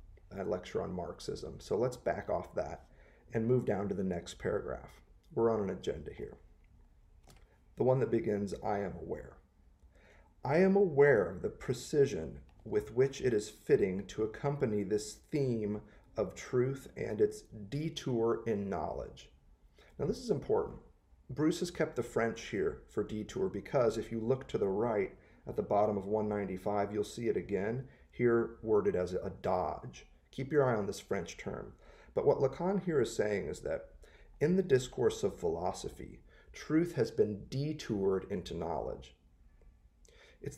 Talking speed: 160 wpm